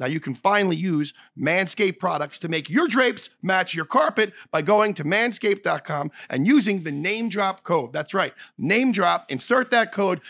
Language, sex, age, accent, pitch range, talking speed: English, male, 40-59, American, 150-205 Hz, 180 wpm